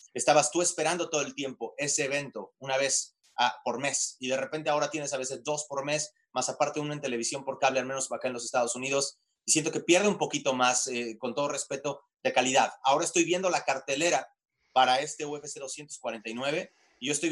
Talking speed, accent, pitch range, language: 215 wpm, Mexican, 130-160 Hz, Spanish